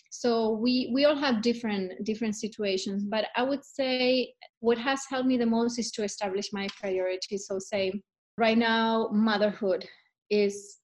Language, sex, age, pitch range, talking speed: English, female, 30-49, 200-245 Hz, 160 wpm